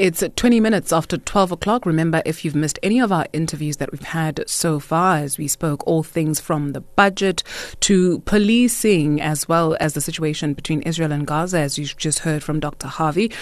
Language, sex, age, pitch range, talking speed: English, female, 30-49, 150-200 Hz, 200 wpm